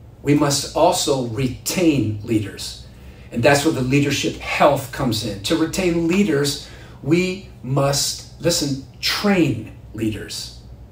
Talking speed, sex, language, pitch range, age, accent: 115 wpm, male, English, 120-165 Hz, 40-59, American